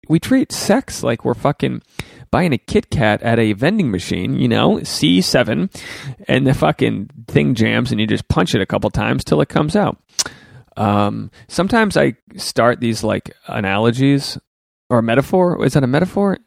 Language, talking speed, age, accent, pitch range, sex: English, 170 wpm, 30-49, American, 100-135 Hz, male